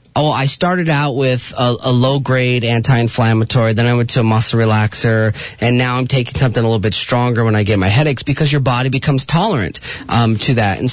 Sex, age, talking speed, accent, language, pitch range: male, 30-49, 215 wpm, American, English, 115-145 Hz